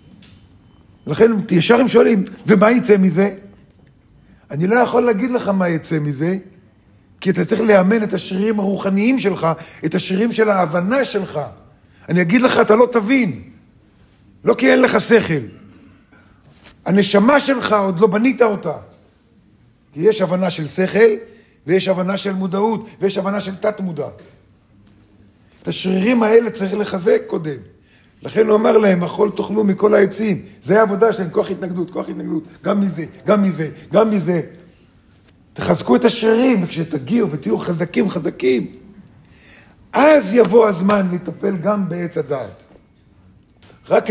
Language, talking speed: Hebrew, 135 wpm